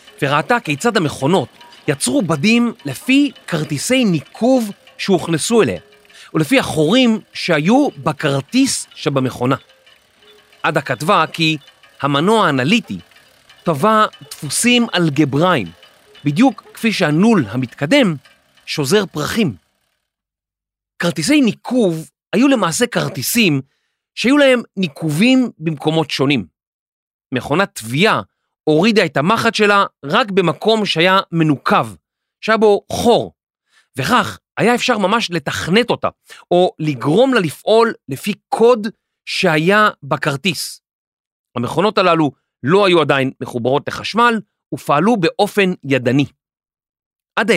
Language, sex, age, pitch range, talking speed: Hebrew, male, 40-59, 145-225 Hz, 95 wpm